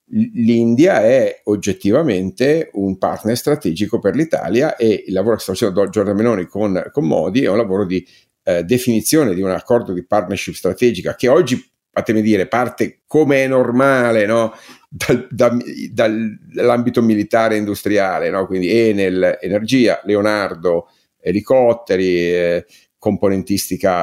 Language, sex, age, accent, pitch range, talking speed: Italian, male, 50-69, native, 90-115 Hz, 130 wpm